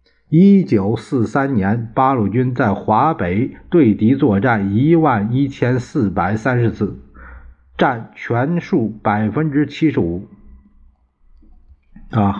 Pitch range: 105-150 Hz